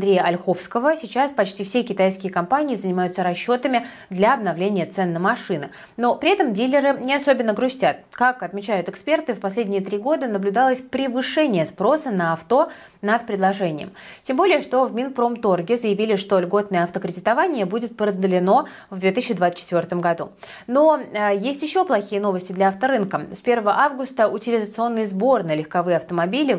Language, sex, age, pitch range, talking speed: Russian, female, 20-39, 180-245 Hz, 145 wpm